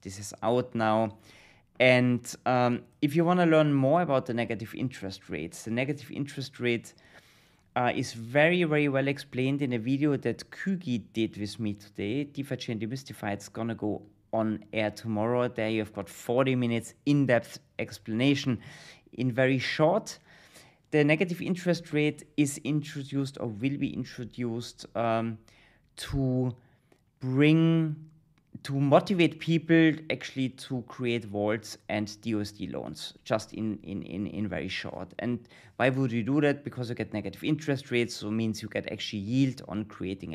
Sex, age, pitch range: male, 30-49, 105-140 Hz